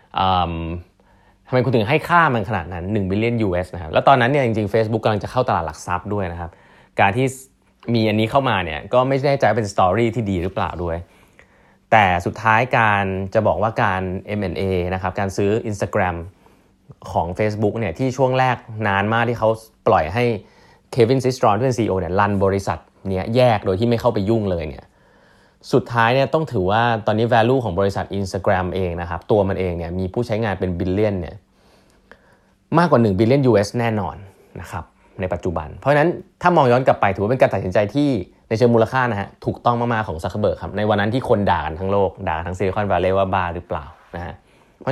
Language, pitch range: Thai, 95-120 Hz